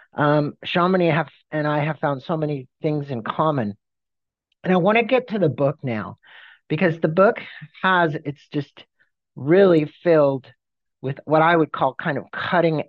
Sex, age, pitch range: male, 50-69, 130-170 Hz